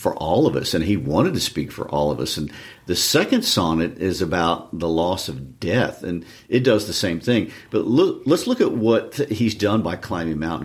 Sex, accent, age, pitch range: male, American, 50-69, 85-110 Hz